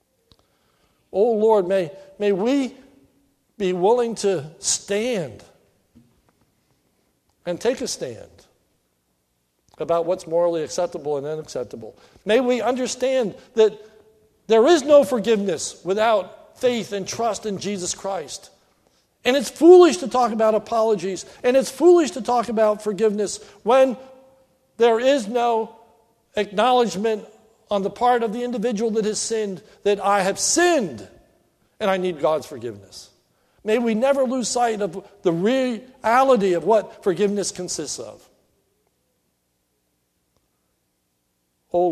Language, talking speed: English, 125 wpm